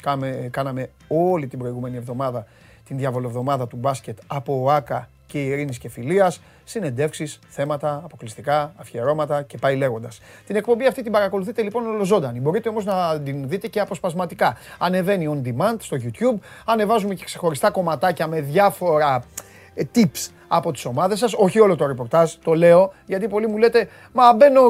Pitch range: 145-220 Hz